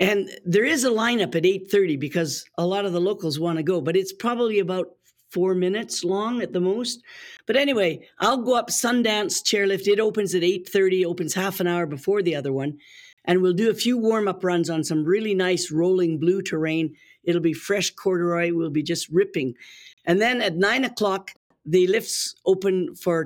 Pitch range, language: 170-220 Hz, English